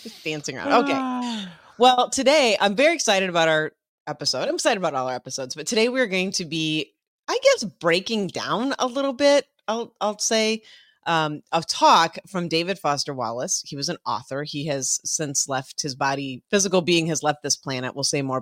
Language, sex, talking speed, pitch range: English, female, 190 wpm, 145-195 Hz